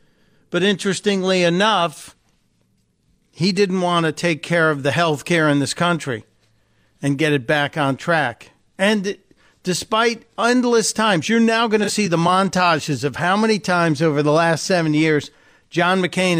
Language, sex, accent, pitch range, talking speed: English, male, American, 140-180 Hz, 160 wpm